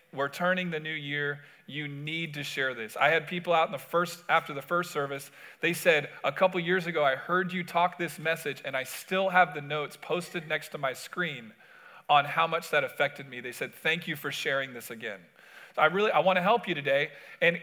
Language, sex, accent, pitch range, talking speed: English, male, American, 145-185 Hz, 230 wpm